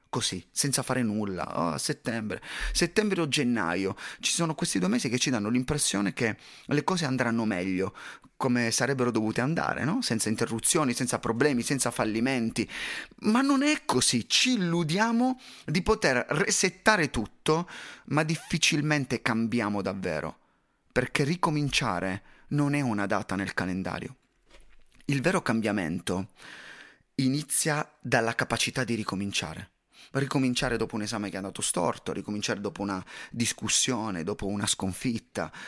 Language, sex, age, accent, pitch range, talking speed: Italian, male, 30-49, native, 110-165 Hz, 135 wpm